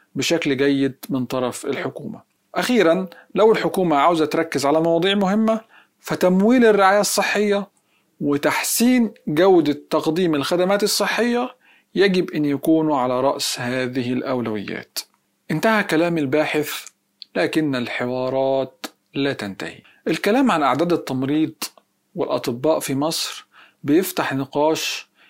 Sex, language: male, Arabic